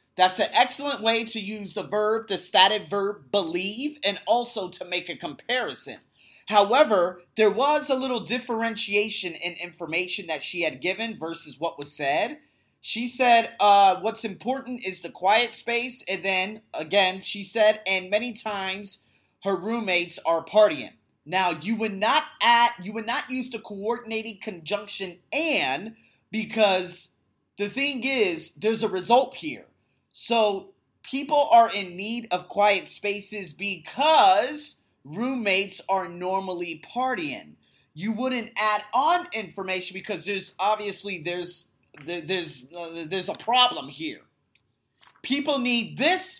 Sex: male